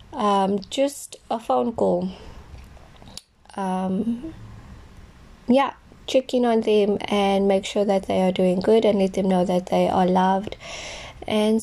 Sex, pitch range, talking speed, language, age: female, 180-225 Hz, 140 wpm, English, 20-39